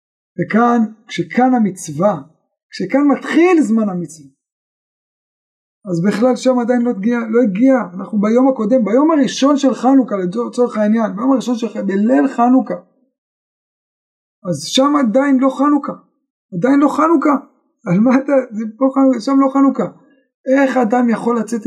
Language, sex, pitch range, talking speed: Hebrew, male, 200-265 Hz, 125 wpm